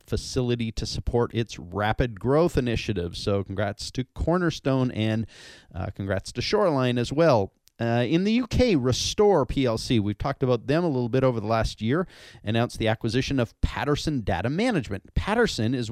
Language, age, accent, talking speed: English, 30-49, American, 165 wpm